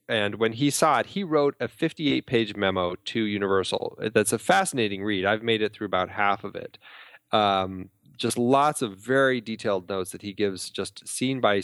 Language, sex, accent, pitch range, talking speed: English, male, American, 100-130 Hz, 195 wpm